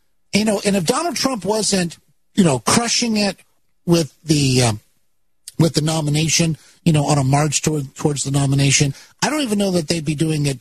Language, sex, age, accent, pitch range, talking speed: English, male, 50-69, American, 145-195 Hz, 200 wpm